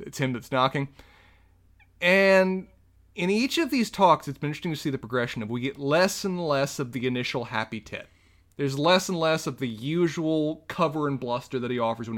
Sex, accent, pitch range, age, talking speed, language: male, American, 110-155 Hz, 30-49, 205 wpm, English